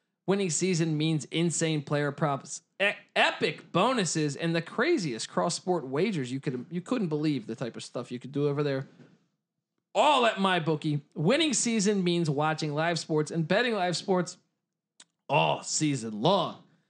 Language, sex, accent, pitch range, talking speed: English, male, American, 155-210 Hz, 160 wpm